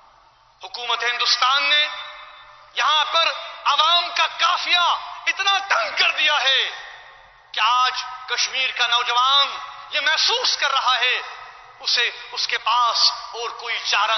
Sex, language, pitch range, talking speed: male, Urdu, 295-370 Hz, 125 wpm